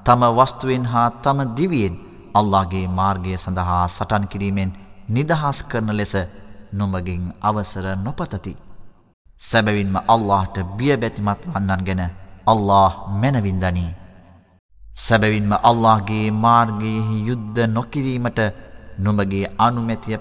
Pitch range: 95-115 Hz